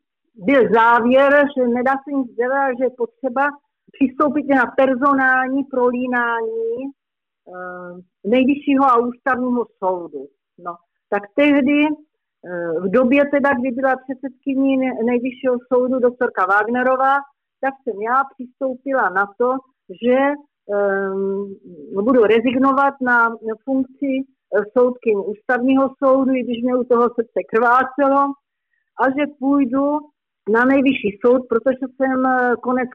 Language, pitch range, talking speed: Czech, 230-275 Hz, 115 wpm